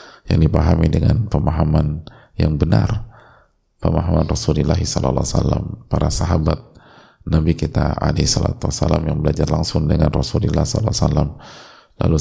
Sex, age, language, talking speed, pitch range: male, 30-49, Indonesian, 115 wpm, 75-85 Hz